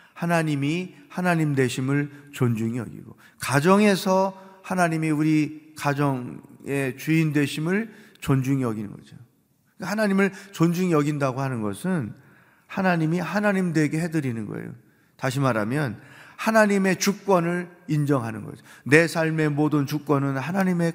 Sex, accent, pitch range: male, native, 135-180 Hz